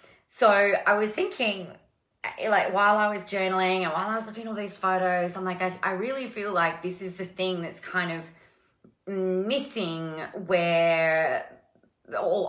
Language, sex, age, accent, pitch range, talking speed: English, female, 30-49, Australian, 165-220 Hz, 170 wpm